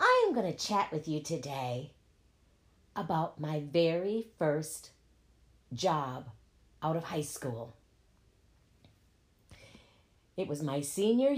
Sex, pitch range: female, 110-180 Hz